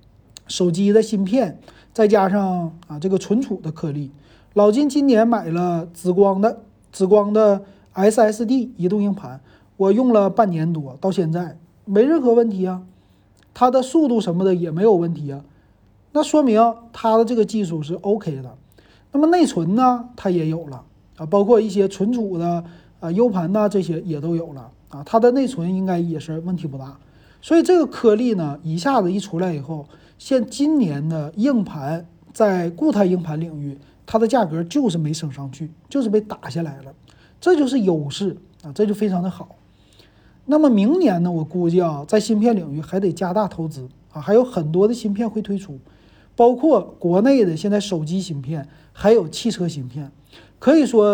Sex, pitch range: male, 160-220 Hz